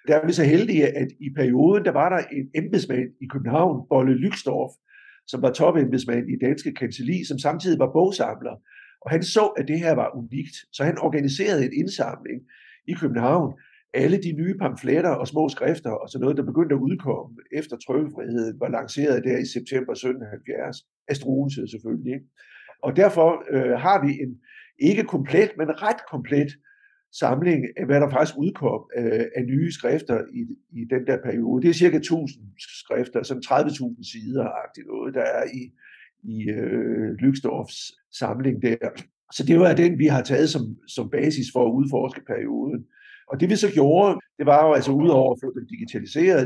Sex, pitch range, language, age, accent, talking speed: male, 130-175 Hz, Danish, 60-79, native, 175 wpm